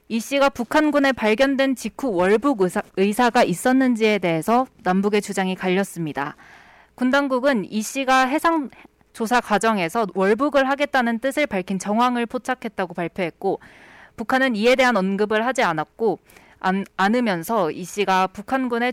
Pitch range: 195-265 Hz